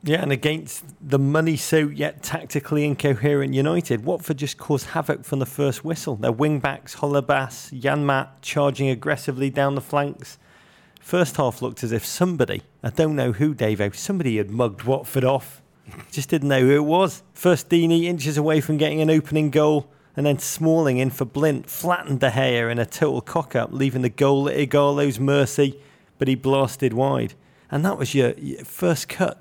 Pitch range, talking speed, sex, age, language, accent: 135-155 Hz, 180 wpm, male, 30-49, English, British